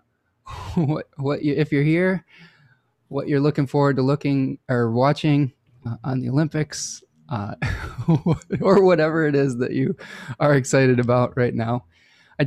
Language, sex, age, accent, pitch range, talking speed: English, male, 20-39, American, 120-150 Hz, 150 wpm